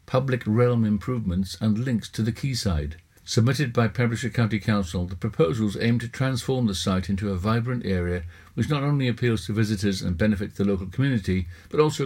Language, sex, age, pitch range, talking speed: English, male, 60-79, 95-125 Hz, 185 wpm